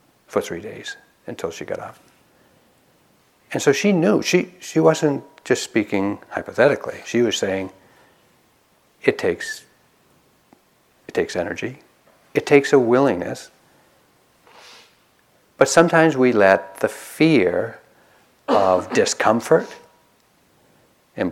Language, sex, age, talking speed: English, male, 60-79, 105 wpm